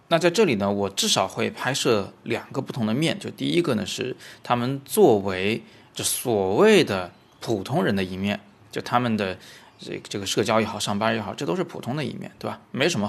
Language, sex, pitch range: Chinese, male, 105-165 Hz